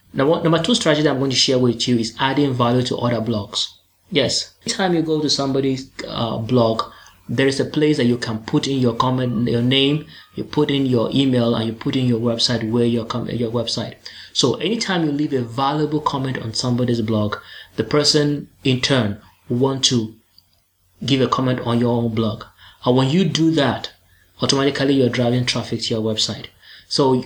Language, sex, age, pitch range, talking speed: English, male, 20-39, 115-135 Hz, 200 wpm